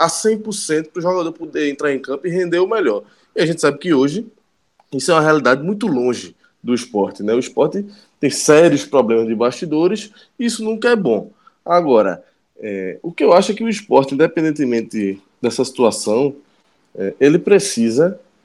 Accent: Brazilian